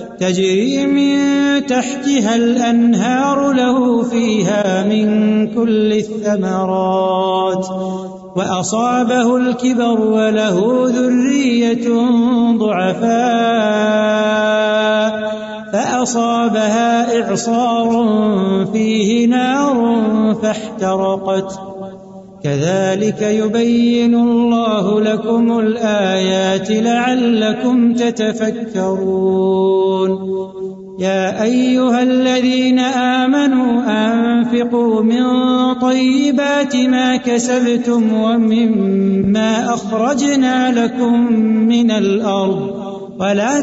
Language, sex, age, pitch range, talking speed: Urdu, male, 30-49, 210-245 Hz, 55 wpm